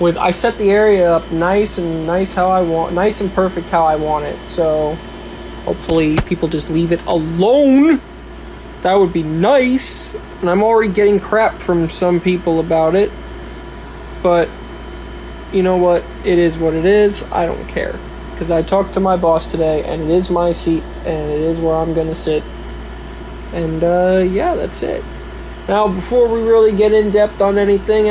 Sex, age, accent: male, 20-39, American